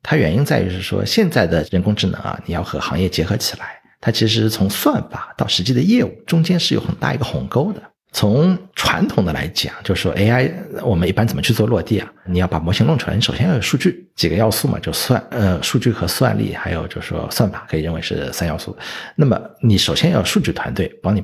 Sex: male